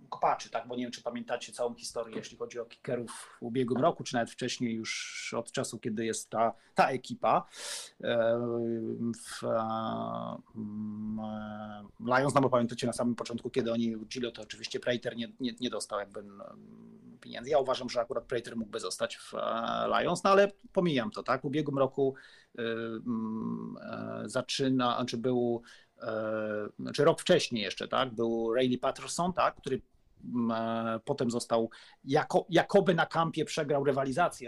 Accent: native